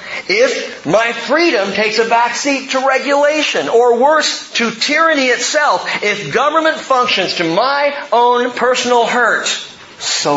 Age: 40-59